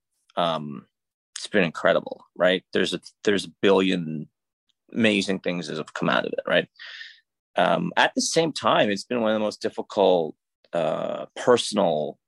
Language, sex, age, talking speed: English, male, 30-49, 155 wpm